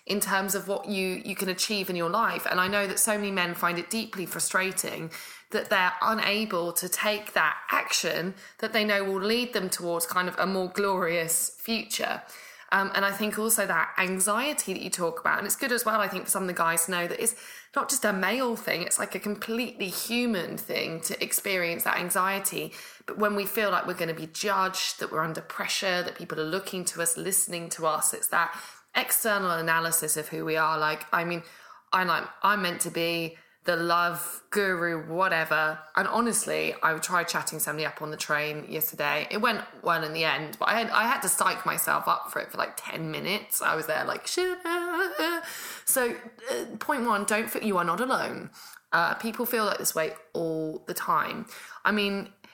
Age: 20-39